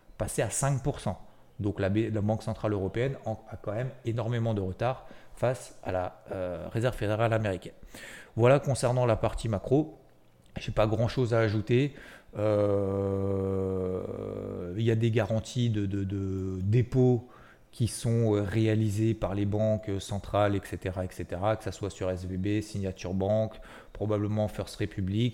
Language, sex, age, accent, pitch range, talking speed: French, male, 30-49, French, 95-115 Hz, 150 wpm